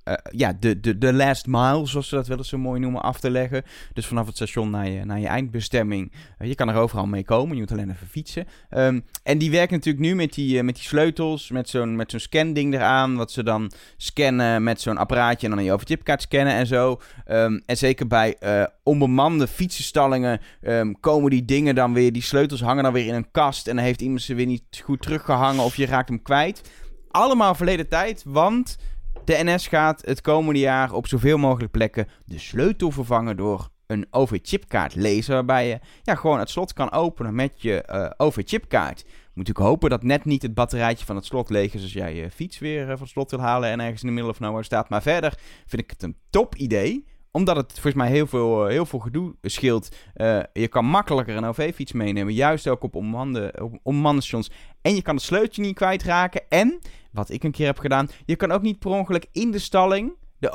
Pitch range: 115-155 Hz